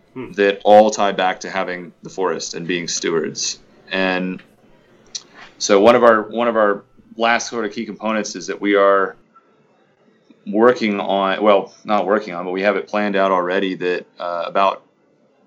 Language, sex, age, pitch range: English, male, 30-49, 90-105 Hz